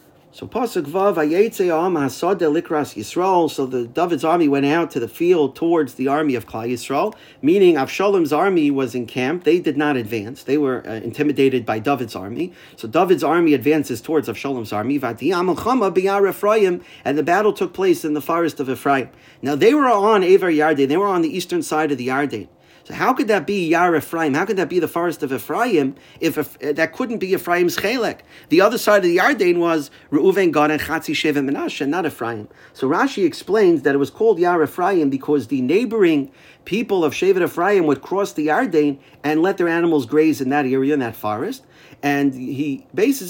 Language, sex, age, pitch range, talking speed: English, male, 40-59, 140-200 Hz, 185 wpm